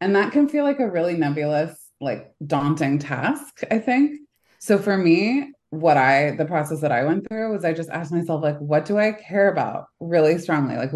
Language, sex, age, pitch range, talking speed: English, female, 20-39, 135-175 Hz, 210 wpm